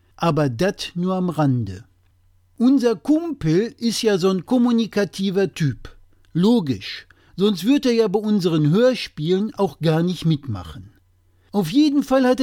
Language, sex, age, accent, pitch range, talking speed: German, male, 50-69, German, 140-230 Hz, 140 wpm